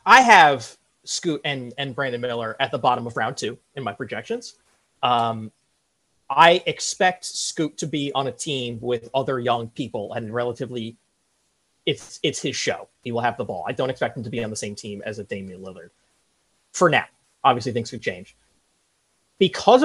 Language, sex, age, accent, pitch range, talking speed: English, male, 30-49, American, 120-170 Hz, 185 wpm